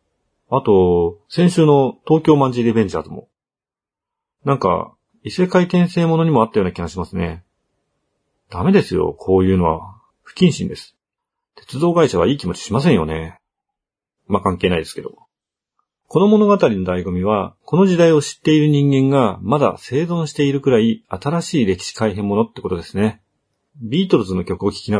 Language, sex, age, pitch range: Japanese, male, 40-59, 95-160 Hz